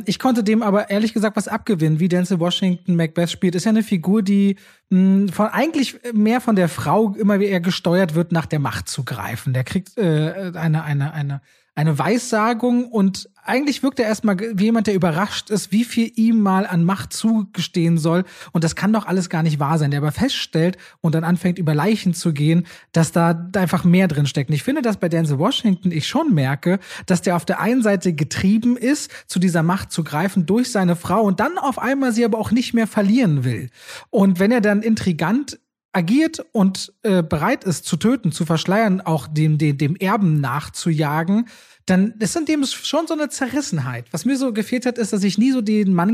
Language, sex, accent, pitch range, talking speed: German, male, German, 170-225 Hz, 210 wpm